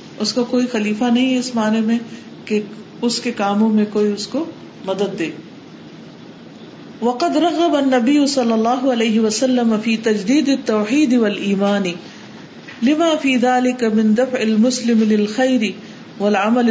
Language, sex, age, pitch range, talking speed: Urdu, female, 50-69, 205-245 Hz, 55 wpm